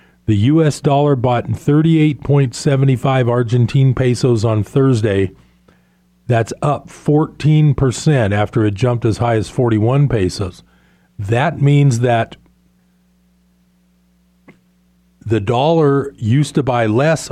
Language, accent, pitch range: English, American, 105-145 Hz